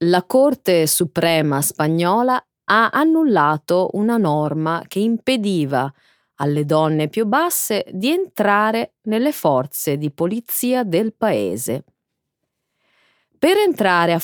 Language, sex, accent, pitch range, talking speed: Italian, female, native, 155-255 Hz, 105 wpm